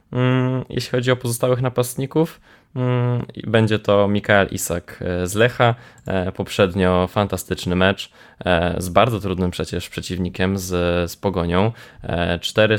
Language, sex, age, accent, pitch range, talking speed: Polish, male, 20-39, native, 90-115 Hz, 110 wpm